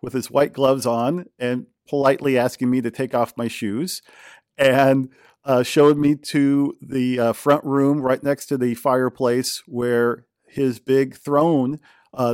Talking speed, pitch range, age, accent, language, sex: 160 wpm, 125-155 Hz, 50-69, American, English, male